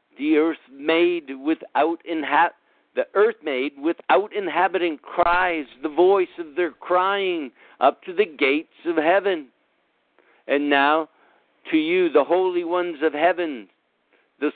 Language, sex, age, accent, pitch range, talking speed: English, male, 60-79, American, 160-195 Hz, 130 wpm